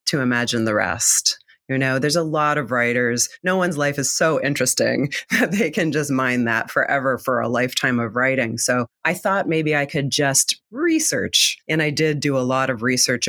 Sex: female